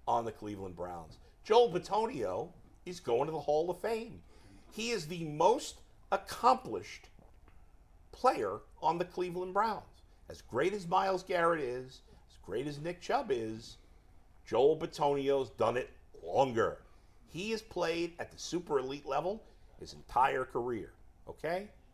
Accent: American